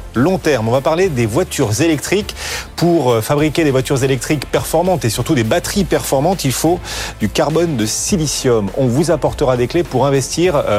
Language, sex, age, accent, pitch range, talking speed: French, male, 40-59, French, 120-165 Hz, 180 wpm